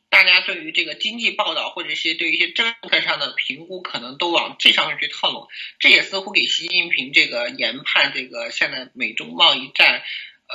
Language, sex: Chinese, male